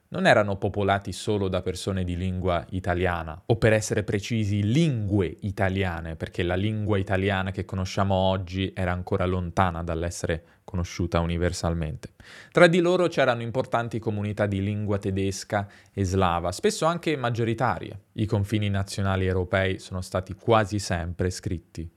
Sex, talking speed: male, 140 wpm